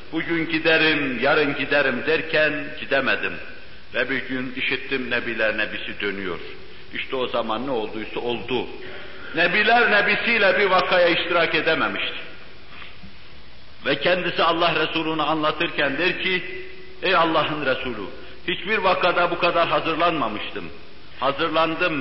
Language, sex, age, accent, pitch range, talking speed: English, male, 60-79, Turkish, 145-180 Hz, 110 wpm